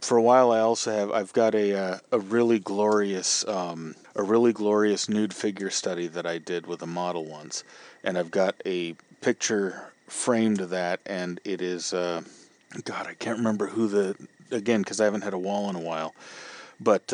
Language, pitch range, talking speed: English, 90-110 Hz, 195 wpm